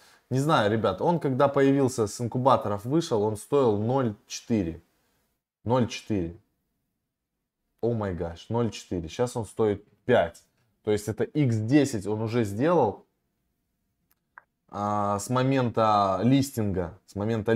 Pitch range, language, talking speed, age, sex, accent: 100-125 Hz, Russian, 115 wpm, 20-39, male, native